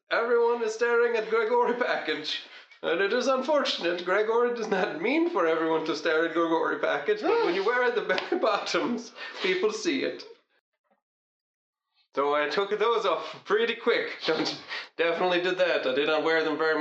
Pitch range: 145-210 Hz